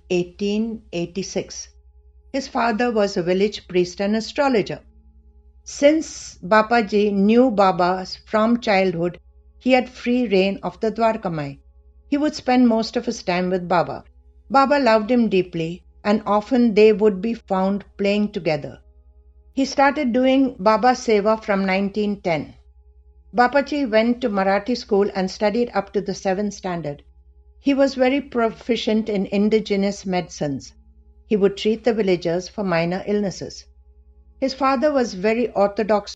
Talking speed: 135 wpm